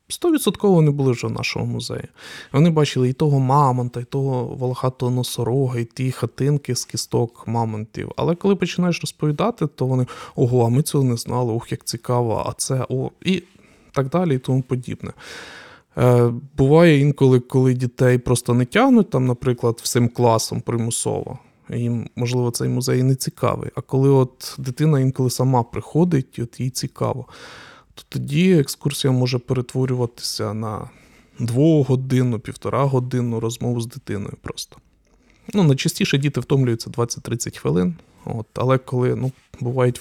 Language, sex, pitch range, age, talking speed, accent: Ukrainian, male, 120-140 Hz, 20-39, 150 wpm, native